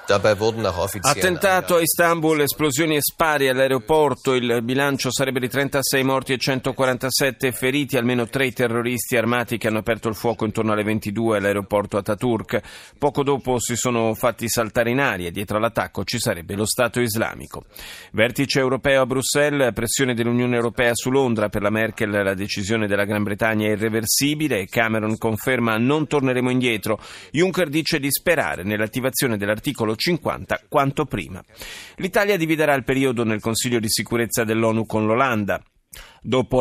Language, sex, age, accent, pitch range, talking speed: Italian, male, 30-49, native, 110-135 Hz, 150 wpm